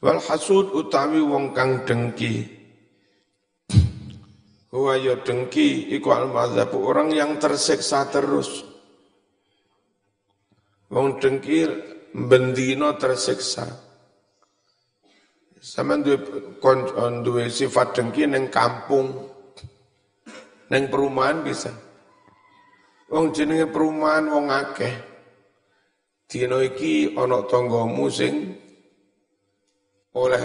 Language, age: Indonesian, 50-69